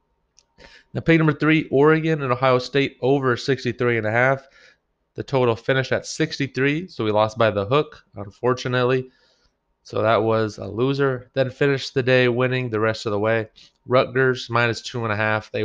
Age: 20-39